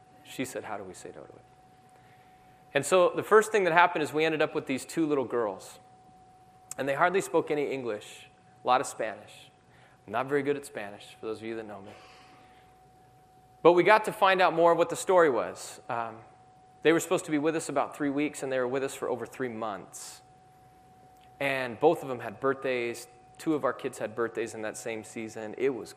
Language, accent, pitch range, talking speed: English, American, 115-150 Hz, 225 wpm